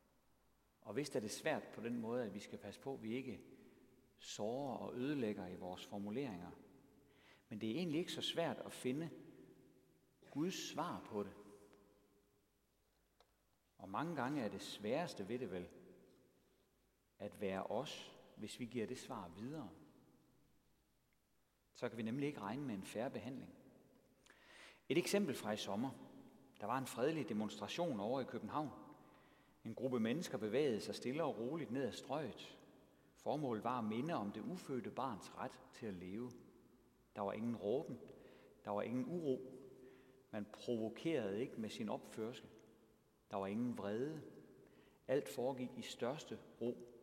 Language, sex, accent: Danish, male, native